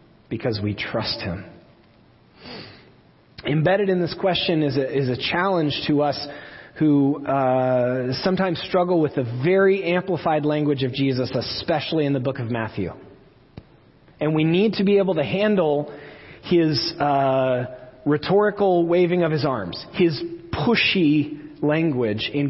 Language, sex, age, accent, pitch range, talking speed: English, male, 30-49, American, 140-180 Hz, 135 wpm